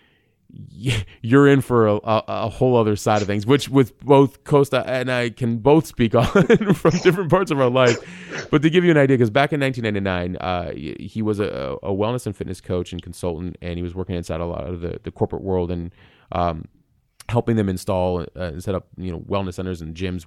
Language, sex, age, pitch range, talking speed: English, male, 30-49, 90-110 Hz, 220 wpm